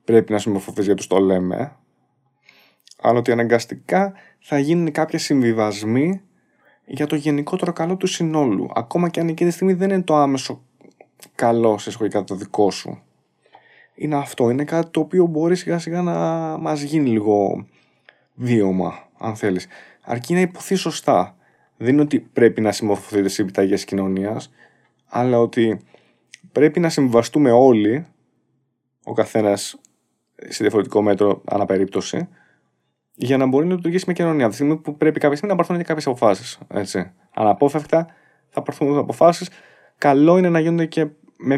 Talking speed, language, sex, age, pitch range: 150 wpm, Greek, male, 20-39, 105-155 Hz